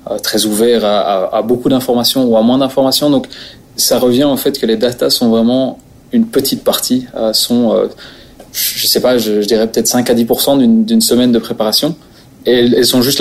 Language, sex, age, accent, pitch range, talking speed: French, male, 20-39, French, 115-135 Hz, 220 wpm